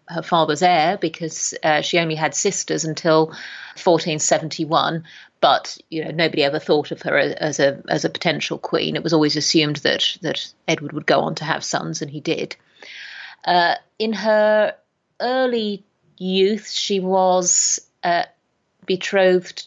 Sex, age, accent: female, 30-49, British